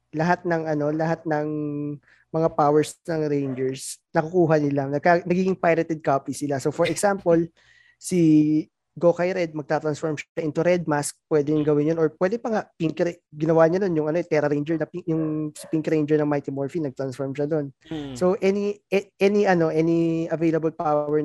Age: 20-39